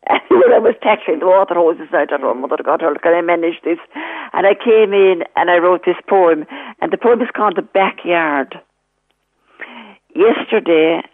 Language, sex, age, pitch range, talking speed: English, female, 50-69, 165-210 Hz, 190 wpm